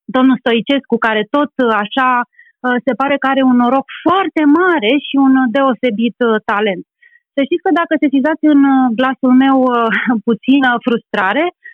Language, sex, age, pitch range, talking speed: Romanian, female, 30-49, 225-285 Hz, 145 wpm